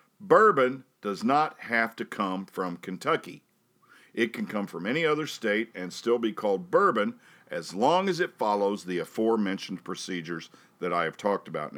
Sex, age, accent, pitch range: male, 50-69, American, 95-130 Hz